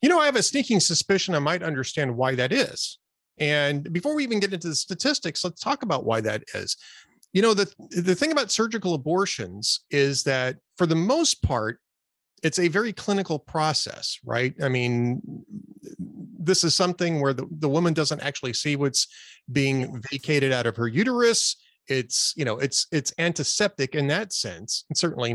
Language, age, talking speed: English, 30-49, 180 wpm